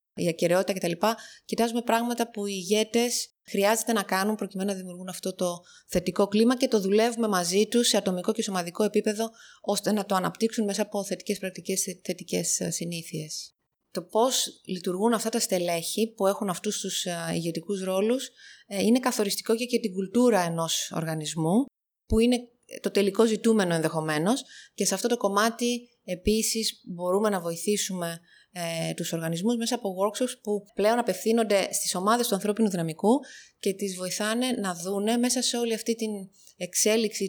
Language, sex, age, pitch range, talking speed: Greek, female, 20-39, 180-225 Hz, 155 wpm